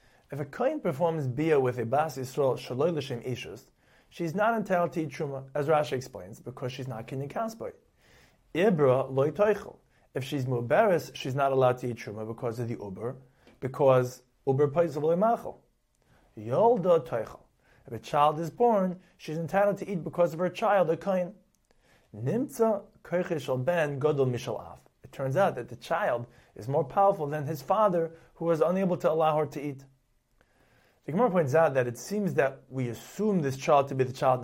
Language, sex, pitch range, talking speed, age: English, male, 125-175 Hz, 160 wpm, 30-49